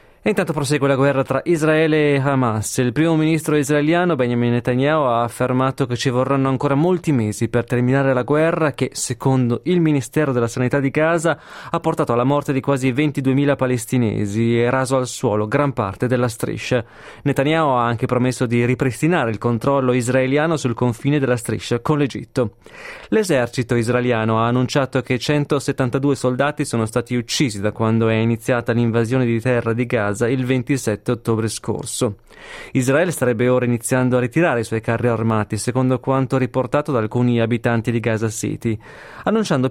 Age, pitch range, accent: 20-39, 120-145 Hz, native